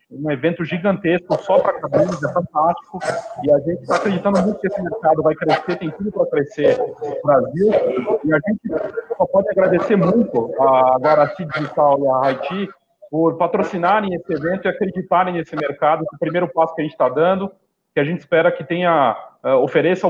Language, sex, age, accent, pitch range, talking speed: Portuguese, male, 40-59, Brazilian, 155-195 Hz, 180 wpm